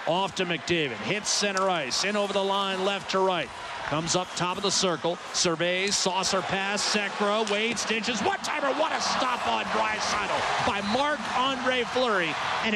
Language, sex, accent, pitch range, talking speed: English, male, American, 180-220 Hz, 175 wpm